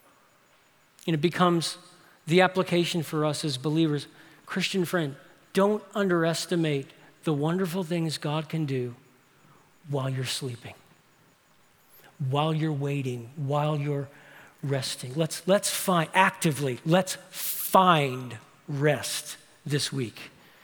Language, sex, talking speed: English, male, 110 wpm